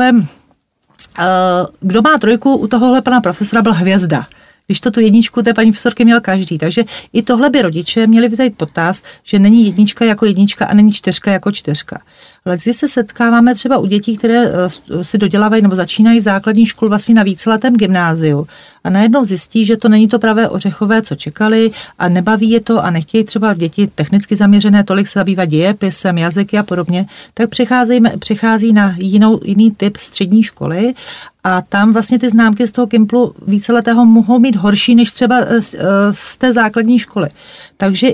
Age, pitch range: 40-59, 195-235 Hz